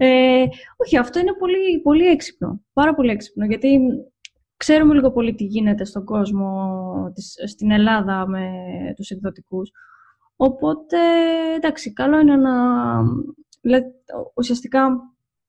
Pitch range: 220-290 Hz